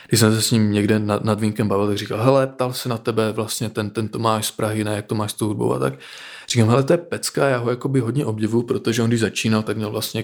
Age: 20-39